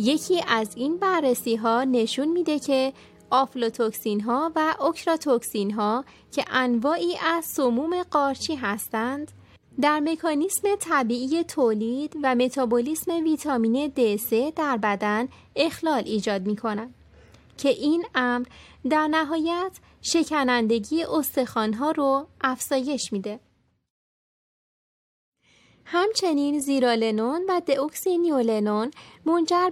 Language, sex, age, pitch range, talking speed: Persian, female, 20-39, 240-315 Hz, 100 wpm